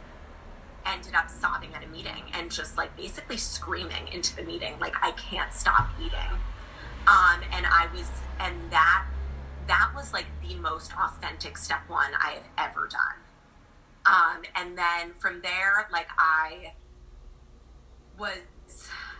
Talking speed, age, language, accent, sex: 140 wpm, 20-39, English, American, female